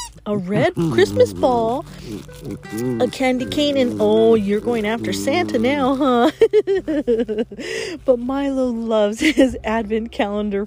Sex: female